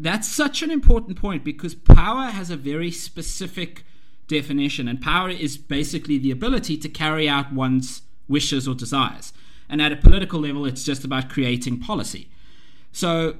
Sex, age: male, 30-49